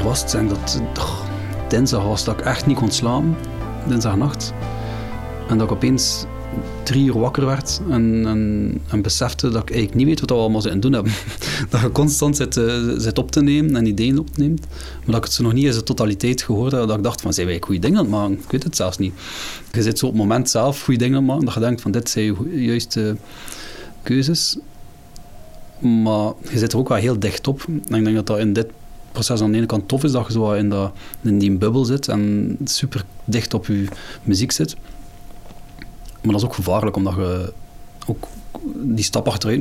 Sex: male